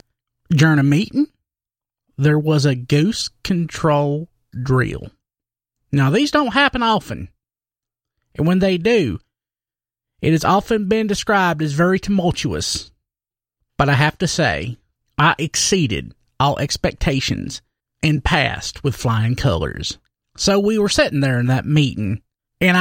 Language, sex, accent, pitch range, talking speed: English, male, American, 125-175 Hz, 130 wpm